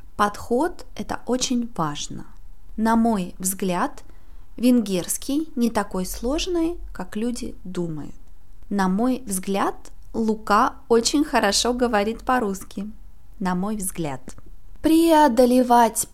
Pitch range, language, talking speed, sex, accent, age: 195-245 Hz, Russian, 95 wpm, female, native, 20-39